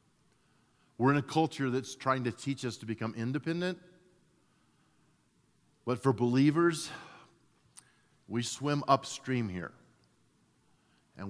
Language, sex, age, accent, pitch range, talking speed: English, male, 40-59, American, 100-135 Hz, 105 wpm